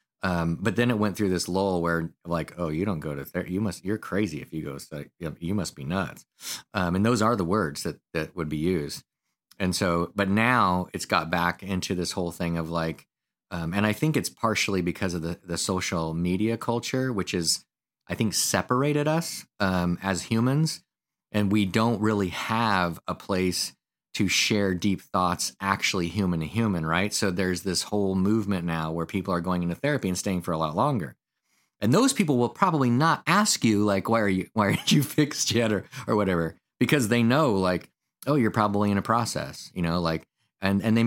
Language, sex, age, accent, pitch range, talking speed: English, male, 30-49, American, 85-110 Hz, 210 wpm